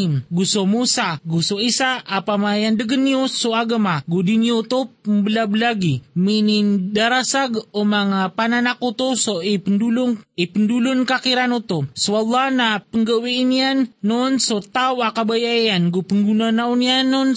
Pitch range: 205-240 Hz